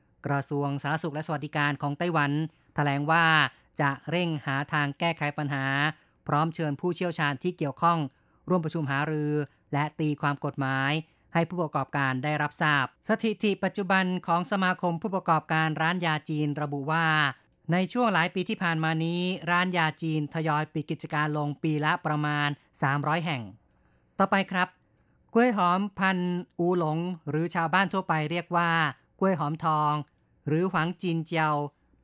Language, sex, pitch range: Thai, female, 145-170 Hz